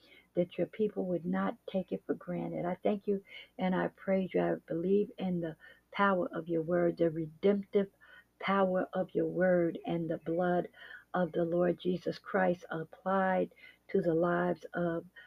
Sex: female